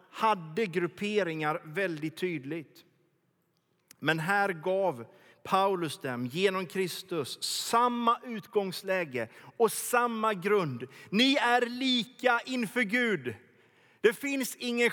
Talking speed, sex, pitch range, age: 95 wpm, male, 175-245 Hz, 30-49